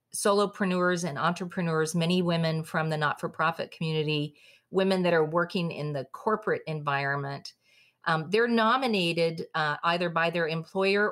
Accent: American